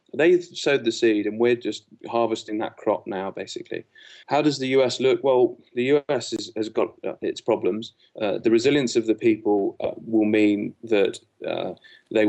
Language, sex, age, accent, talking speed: English, male, 30-49, British, 175 wpm